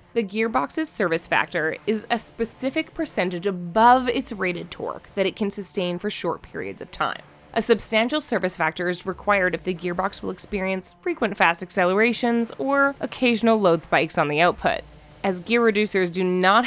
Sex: female